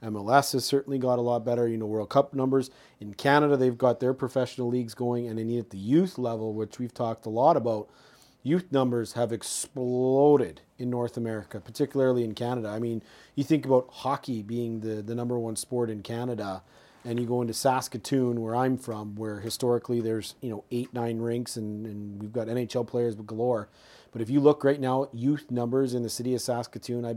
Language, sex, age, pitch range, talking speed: English, male, 40-59, 115-130 Hz, 205 wpm